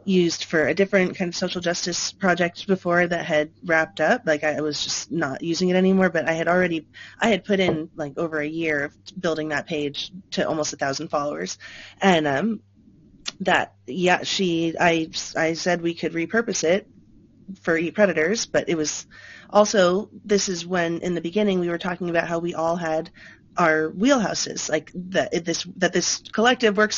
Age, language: 30-49, English